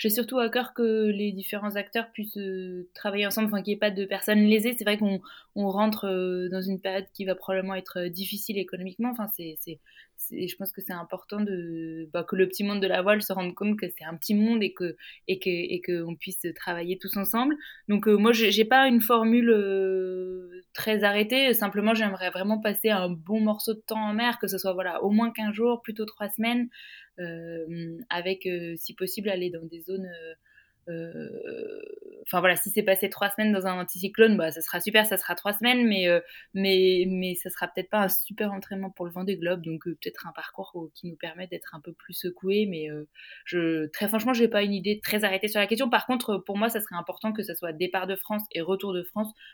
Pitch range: 180-215 Hz